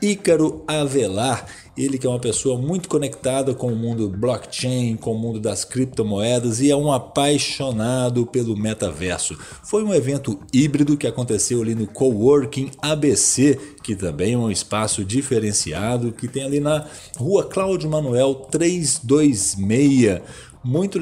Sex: male